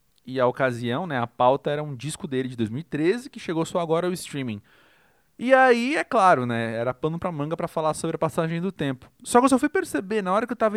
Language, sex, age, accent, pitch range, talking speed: Portuguese, male, 20-39, Brazilian, 125-180 Hz, 250 wpm